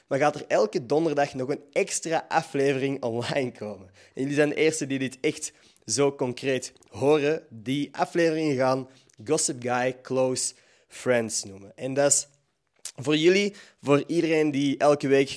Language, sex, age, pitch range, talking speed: Dutch, male, 20-39, 120-140 Hz, 155 wpm